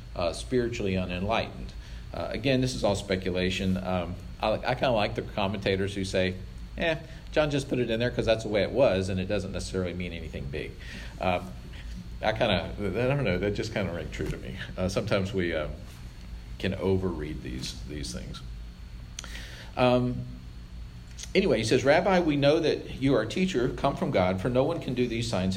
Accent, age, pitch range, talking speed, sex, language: American, 50-69, 95-125 Hz, 200 wpm, male, English